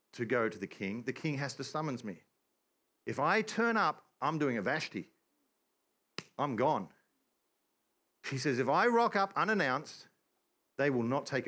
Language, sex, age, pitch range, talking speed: English, male, 40-59, 140-220 Hz, 165 wpm